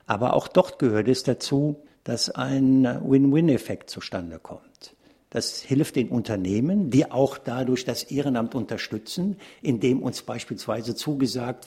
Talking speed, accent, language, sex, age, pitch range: 130 wpm, German, German, male, 60-79, 115-130 Hz